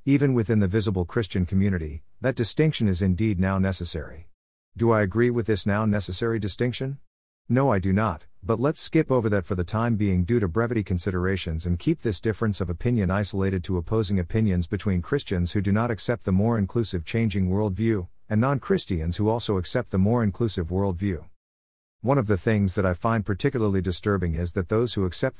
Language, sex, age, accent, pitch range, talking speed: English, male, 50-69, American, 90-115 Hz, 190 wpm